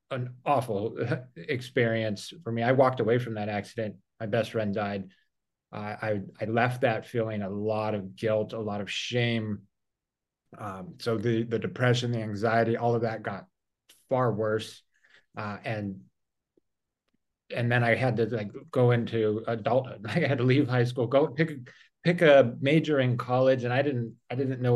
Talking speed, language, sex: 175 wpm, English, male